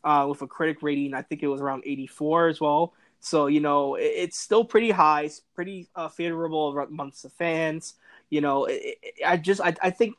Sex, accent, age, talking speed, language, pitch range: male, American, 20-39, 220 wpm, English, 145-175 Hz